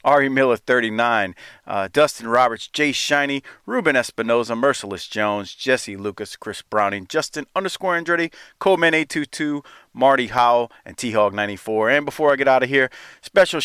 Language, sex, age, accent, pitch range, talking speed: English, male, 40-59, American, 110-165 Hz, 145 wpm